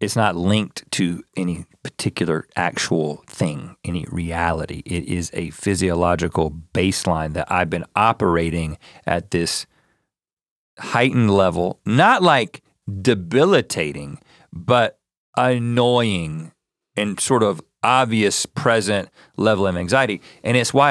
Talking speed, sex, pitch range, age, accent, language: 110 wpm, male, 95-120 Hz, 40-59, American, English